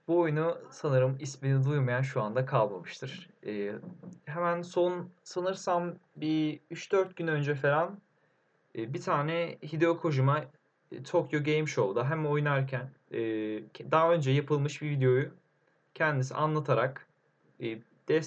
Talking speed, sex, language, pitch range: 110 wpm, male, Turkish, 130-160 Hz